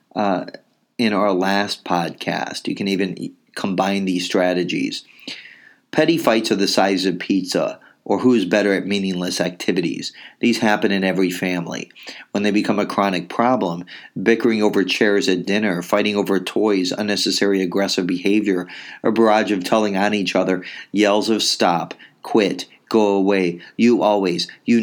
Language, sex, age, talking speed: English, male, 40-59, 150 wpm